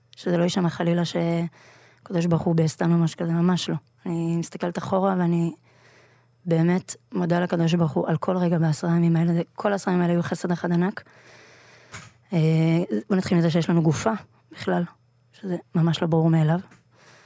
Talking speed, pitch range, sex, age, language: 165 wpm, 150-175 Hz, female, 20-39, Hebrew